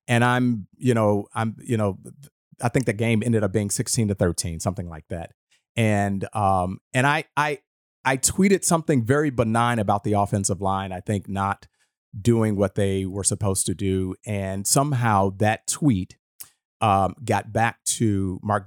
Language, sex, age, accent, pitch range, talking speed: English, male, 30-49, American, 100-125 Hz, 170 wpm